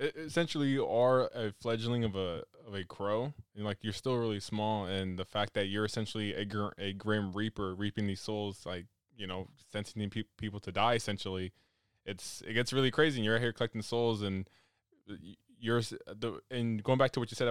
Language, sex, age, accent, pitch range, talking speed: English, male, 20-39, American, 95-115 Hz, 205 wpm